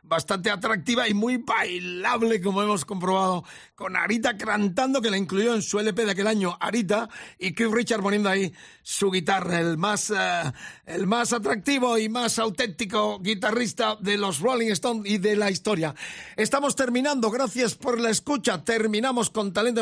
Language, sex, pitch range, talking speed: Spanish, male, 180-220 Hz, 165 wpm